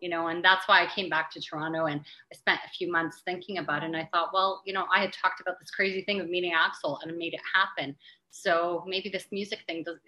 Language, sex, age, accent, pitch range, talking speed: English, female, 30-49, American, 160-185 Hz, 275 wpm